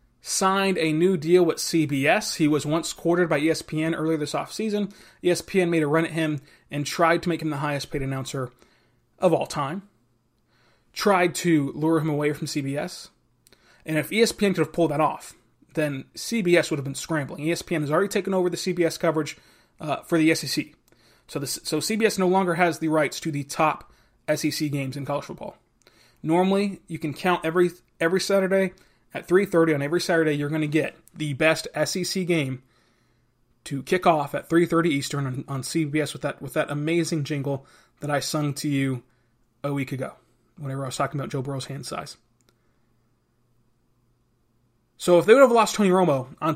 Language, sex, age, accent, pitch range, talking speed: English, male, 20-39, American, 140-170 Hz, 185 wpm